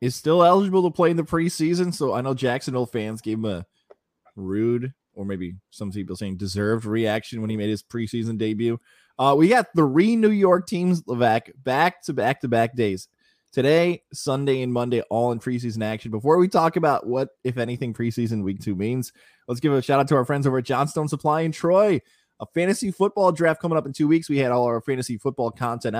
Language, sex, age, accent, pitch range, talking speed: English, male, 20-39, American, 115-150 Hz, 210 wpm